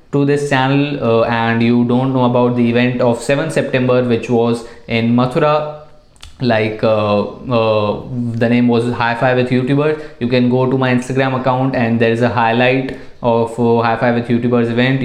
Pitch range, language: 115-135 Hz, Hindi